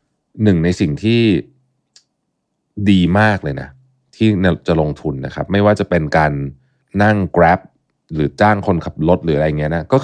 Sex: male